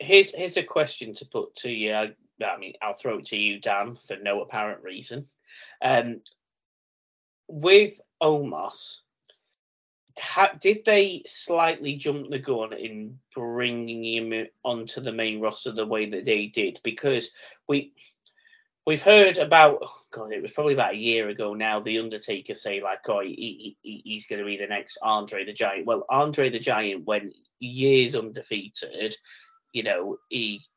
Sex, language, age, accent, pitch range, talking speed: male, English, 30-49, British, 110-165 Hz, 155 wpm